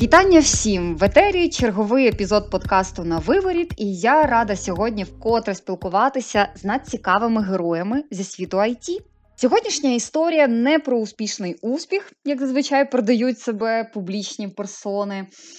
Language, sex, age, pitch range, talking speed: Ukrainian, female, 20-39, 190-260 Hz, 125 wpm